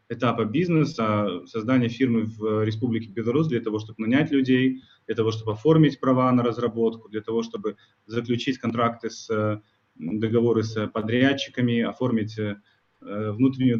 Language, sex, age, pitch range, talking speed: Russian, male, 20-39, 110-125 Hz, 130 wpm